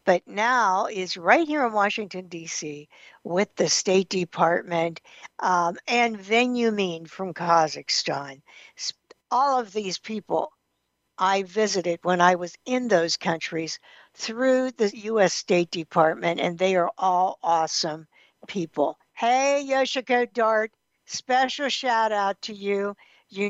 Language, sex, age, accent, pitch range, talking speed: English, female, 60-79, American, 175-230 Hz, 125 wpm